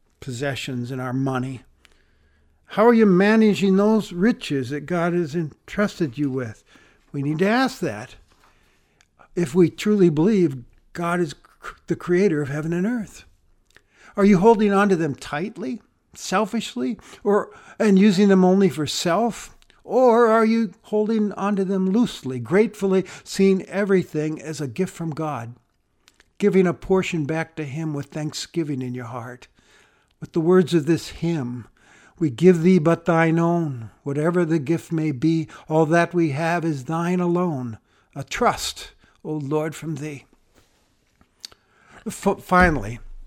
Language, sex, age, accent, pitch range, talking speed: English, male, 60-79, American, 140-190 Hz, 150 wpm